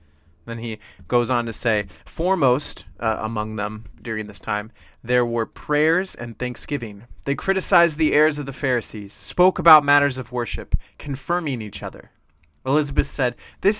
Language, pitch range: English, 110-145 Hz